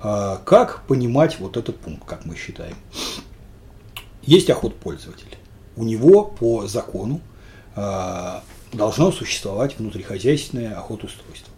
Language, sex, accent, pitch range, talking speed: Russian, male, native, 100-135 Hz, 105 wpm